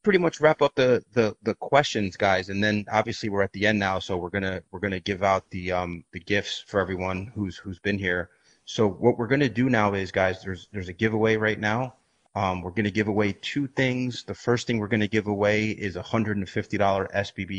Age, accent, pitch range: 30-49, American, 95-115 Hz